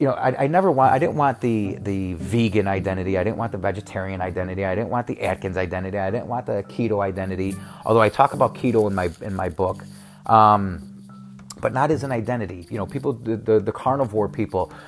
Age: 30-49